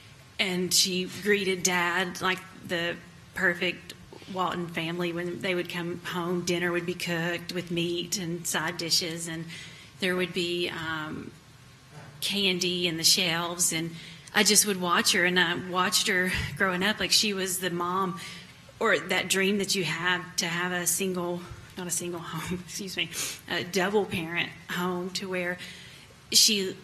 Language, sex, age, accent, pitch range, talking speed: English, female, 30-49, American, 175-195 Hz, 160 wpm